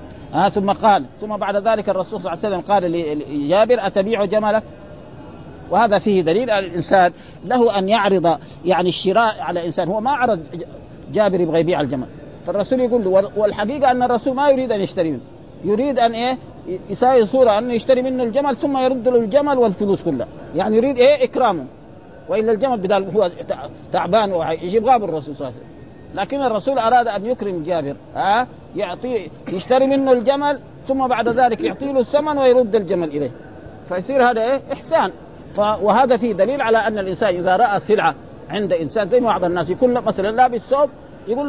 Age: 50-69